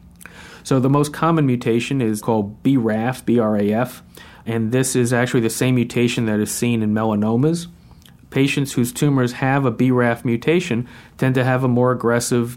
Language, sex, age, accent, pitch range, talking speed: English, male, 50-69, American, 115-135 Hz, 160 wpm